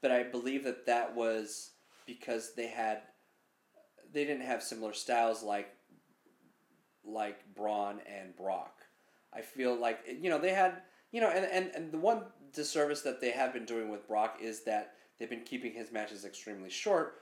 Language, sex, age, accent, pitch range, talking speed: English, male, 30-49, American, 110-130 Hz, 175 wpm